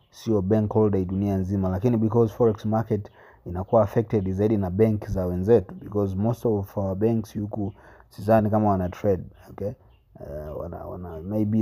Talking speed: 165 wpm